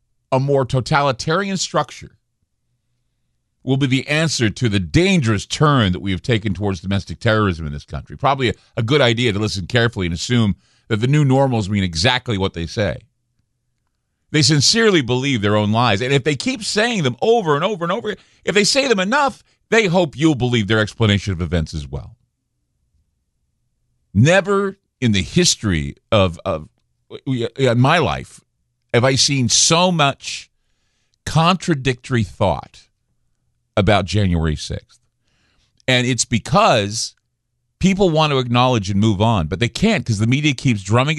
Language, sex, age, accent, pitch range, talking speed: English, male, 50-69, American, 100-140 Hz, 160 wpm